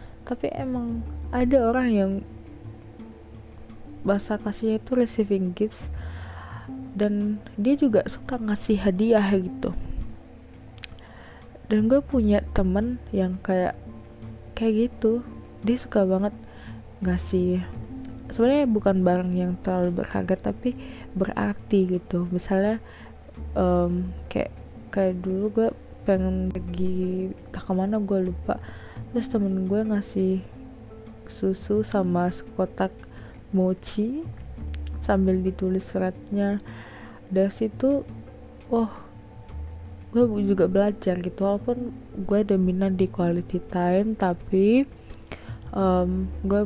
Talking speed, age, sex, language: 100 wpm, 20-39, female, Indonesian